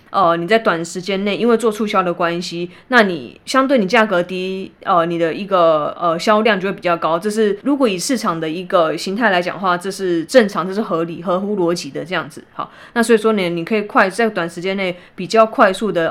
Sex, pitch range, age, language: female, 175-225 Hz, 20-39, Chinese